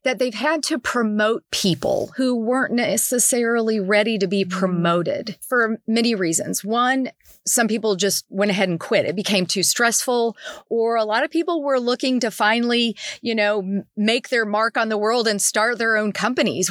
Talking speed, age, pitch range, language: 180 wpm, 40-59, 195-245 Hz, English